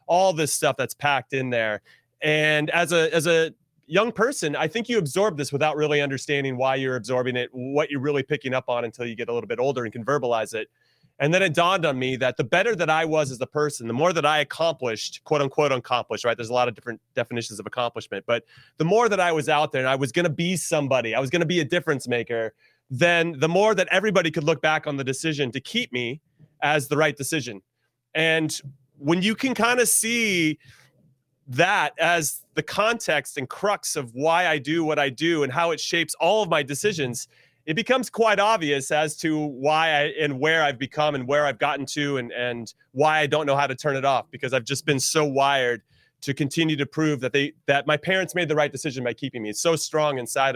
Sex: male